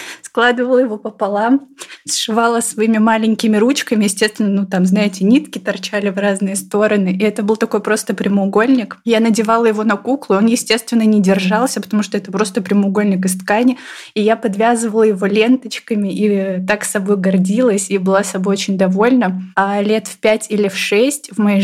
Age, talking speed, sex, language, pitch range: 20-39, 170 wpm, female, Russian, 200-230 Hz